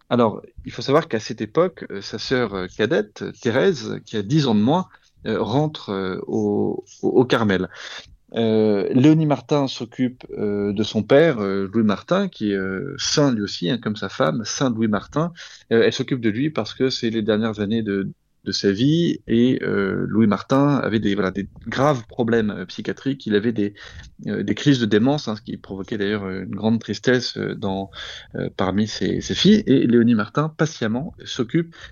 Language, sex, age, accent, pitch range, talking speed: French, male, 30-49, French, 105-140 Hz, 185 wpm